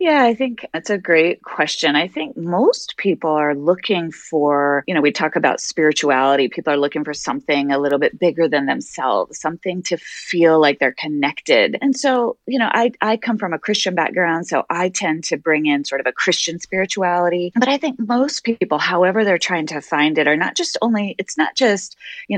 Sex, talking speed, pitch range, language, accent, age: female, 210 wpm, 155-230 Hz, English, American, 30-49